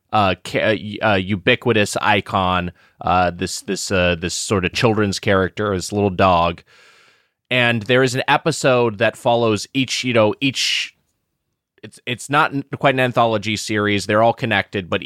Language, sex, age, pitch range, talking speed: English, male, 20-39, 100-125 Hz, 155 wpm